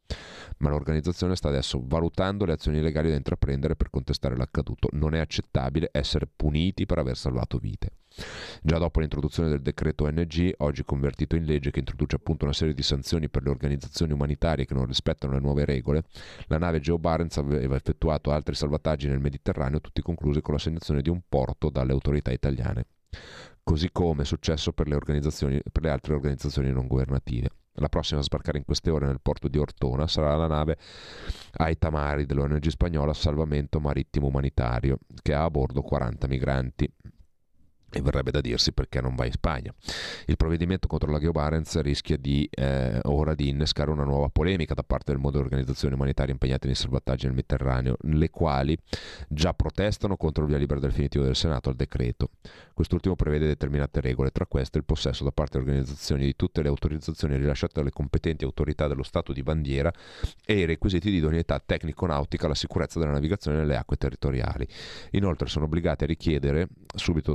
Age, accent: 30-49, native